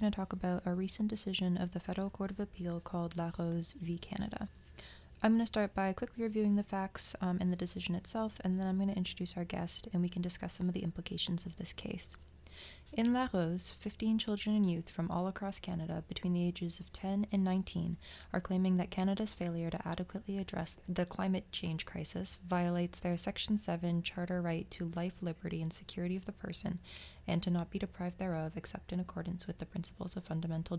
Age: 20-39